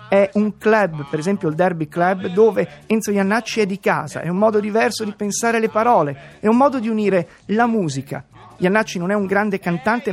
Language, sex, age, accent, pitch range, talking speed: Italian, male, 30-49, native, 170-215 Hz, 205 wpm